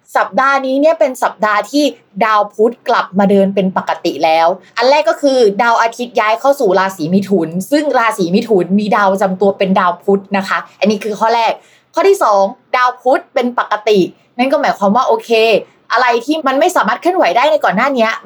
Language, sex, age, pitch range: Thai, female, 20-39, 195-255 Hz